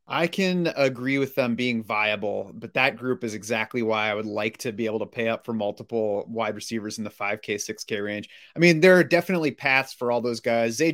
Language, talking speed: English, 240 wpm